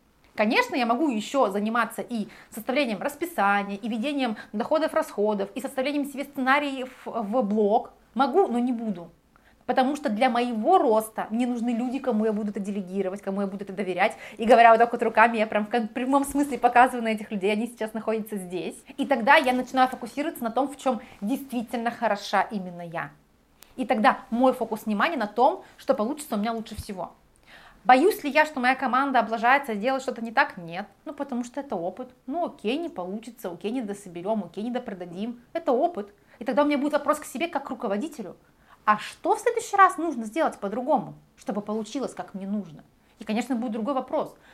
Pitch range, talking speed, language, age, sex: 210-265 Hz, 190 wpm, Russian, 30-49, female